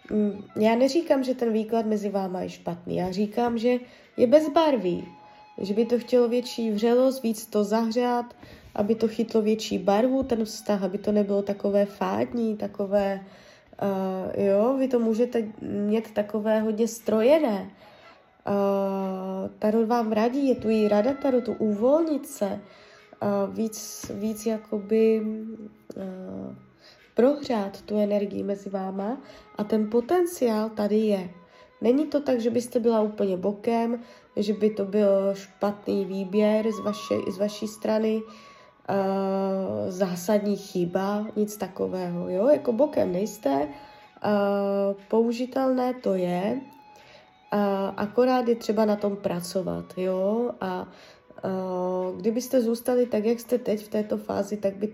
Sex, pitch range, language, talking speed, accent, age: female, 200-235 Hz, Czech, 135 wpm, native, 20-39